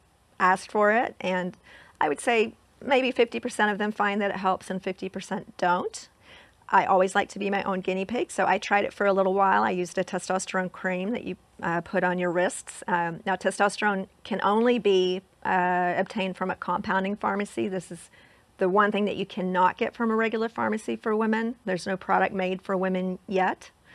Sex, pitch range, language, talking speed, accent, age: female, 185-210 Hz, English, 210 wpm, American, 40-59